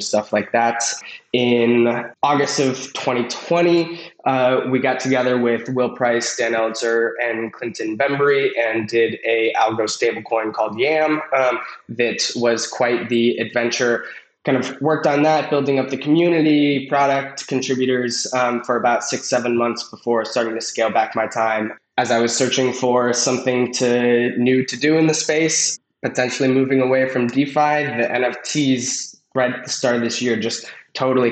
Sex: male